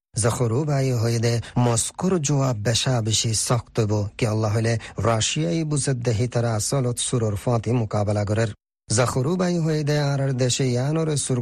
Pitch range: 110-140 Hz